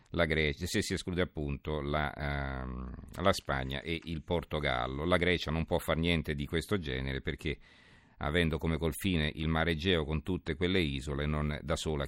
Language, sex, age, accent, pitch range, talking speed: Italian, male, 50-69, native, 80-95 Hz, 180 wpm